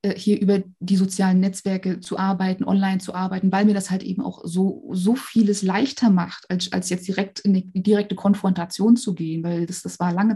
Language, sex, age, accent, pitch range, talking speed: German, female, 20-39, German, 185-215 Hz, 220 wpm